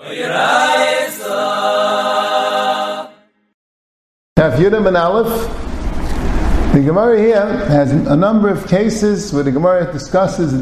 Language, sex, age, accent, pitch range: English, male, 50-69, American, 135-185 Hz